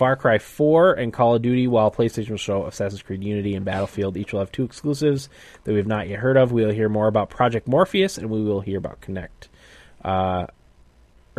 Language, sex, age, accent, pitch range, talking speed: English, male, 10-29, American, 100-125 Hz, 220 wpm